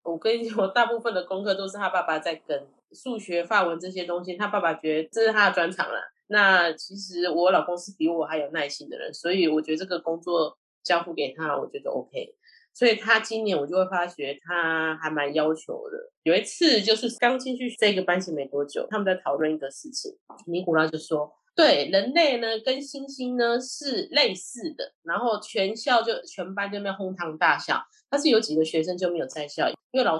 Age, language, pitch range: 20-39, Chinese, 170-235 Hz